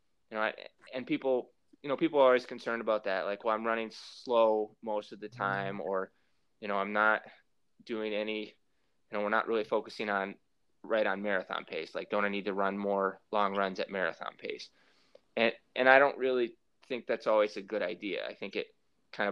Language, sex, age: English, male, 20-39